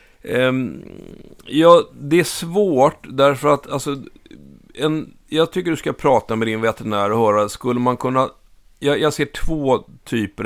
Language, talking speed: Swedish, 150 wpm